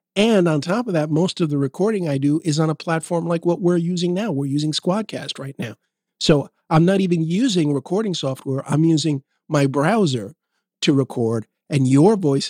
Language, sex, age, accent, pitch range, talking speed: English, male, 50-69, American, 145-195 Hz, 195 wpm